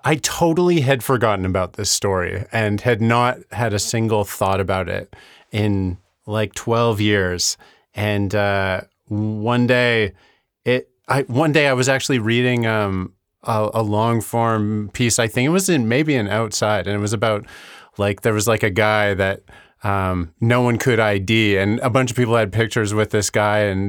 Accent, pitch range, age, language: American, 105-125 Hz, 30-49, English